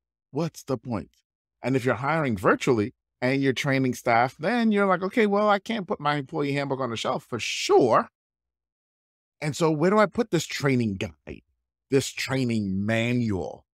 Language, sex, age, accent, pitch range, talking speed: English, male, 30-49, American, 105-150 Hz, 175 wpm